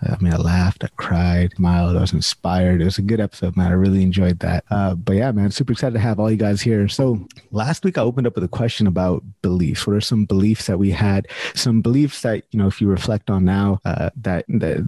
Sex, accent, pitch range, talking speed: male, American, 95-115 Hz, 255 wpm